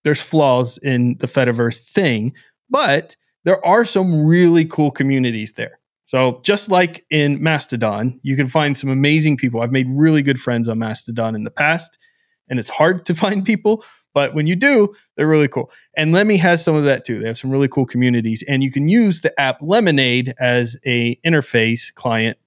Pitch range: 120-160 Hz